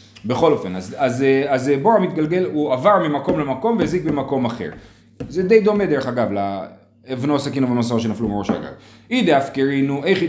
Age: 30-49